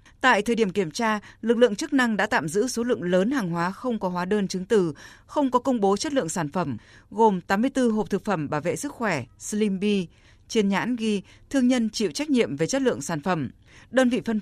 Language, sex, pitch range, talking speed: Vietnamese, female, 185-240 Hz, 235 wpm